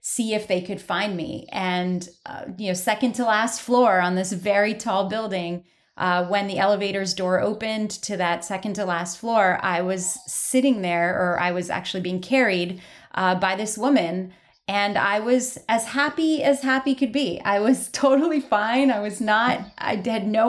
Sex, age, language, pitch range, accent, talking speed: female, 30-49, English, 185-230 Hz, American, 185 wpm